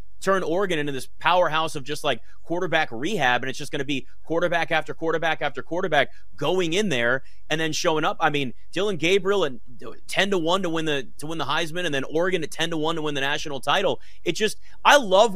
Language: English